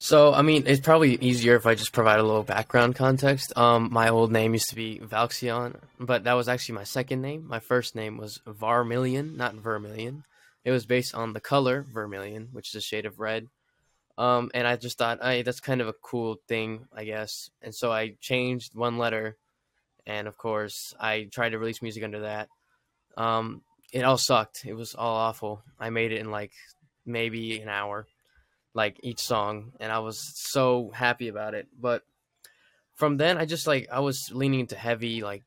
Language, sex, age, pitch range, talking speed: English, male, 10-29, 110-125 Hz, 200 wpm